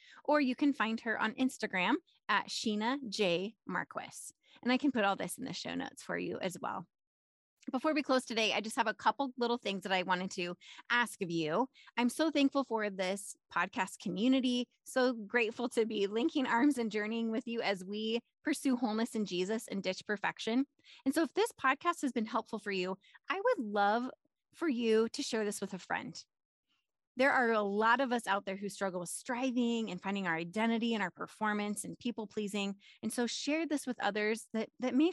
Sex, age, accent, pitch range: female, 20-39, American, 210-275 Hz